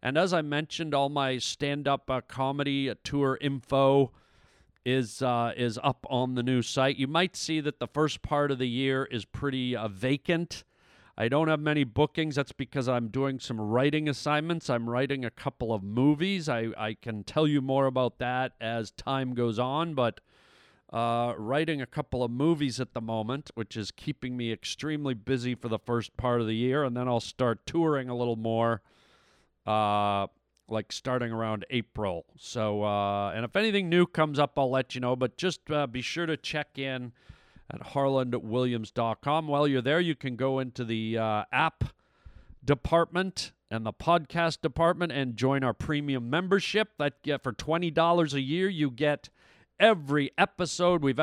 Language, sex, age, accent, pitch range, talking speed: English, male, 50-69, American, 120-150 Hz, 180 wpm